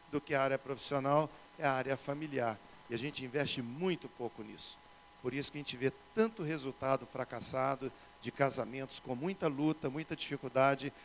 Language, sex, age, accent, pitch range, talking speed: Portuguese, male, 50-69, Brazilian, 140-175 Hz, 175 wpm